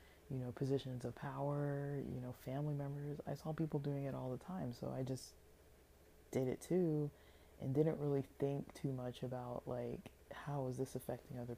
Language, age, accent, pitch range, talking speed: English, 20-39, American, 120-140 Hz, 185 wpm